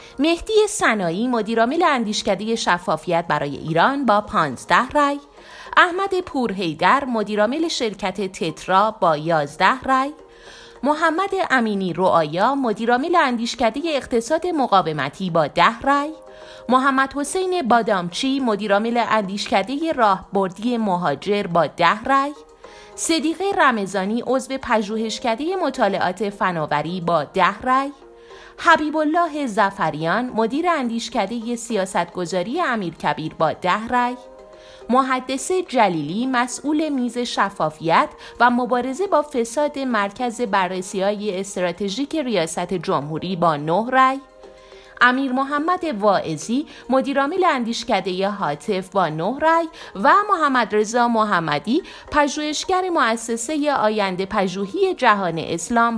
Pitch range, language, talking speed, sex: 190-280 Hz, Persian, 105 wpm, female